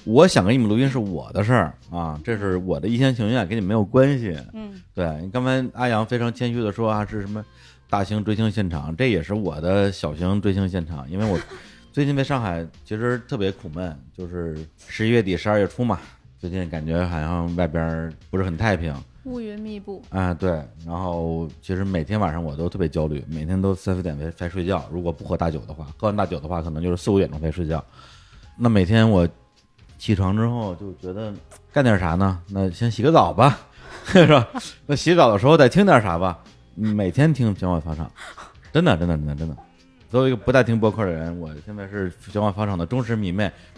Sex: male